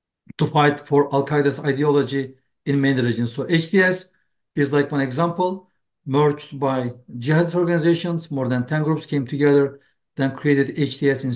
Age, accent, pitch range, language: 60-79, Turkish, 140-170 Hz, English